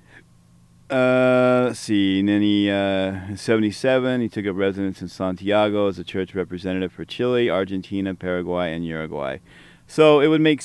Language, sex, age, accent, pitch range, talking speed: English, male, 40-59, American, 95-130 Hz, 150 wpm